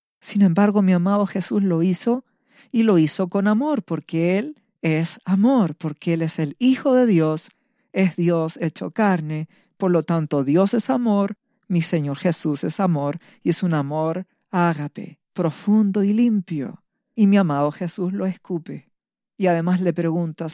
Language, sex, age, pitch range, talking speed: Spanish, female, 50-69, 165-220 Hz, 165 wpm